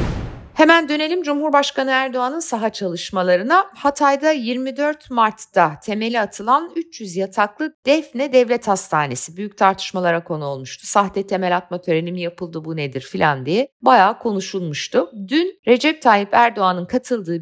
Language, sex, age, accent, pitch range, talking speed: Turkish, female, 60-79, native, 175-255 Hz, 125 wpm